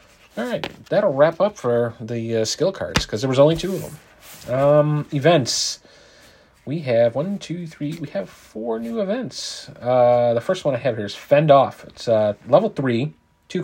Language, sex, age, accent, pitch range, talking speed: English, male, 40-59, American, 115-150 Hz, 195 wpm